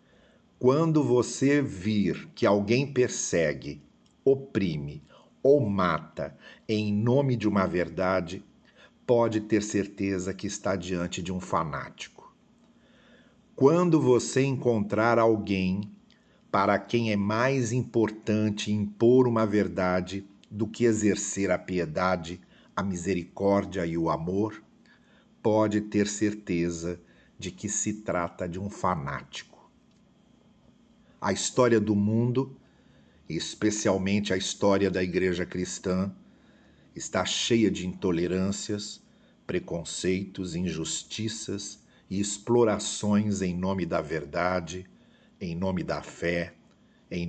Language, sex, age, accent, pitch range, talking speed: Portuguese, male, 50-69, Brazilian, 90-110 Hz, 105 wpm